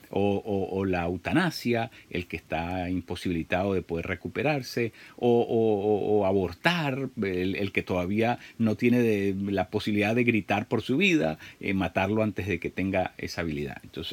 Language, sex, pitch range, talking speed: Spanish, male, 85-110 Hz, 160 wpm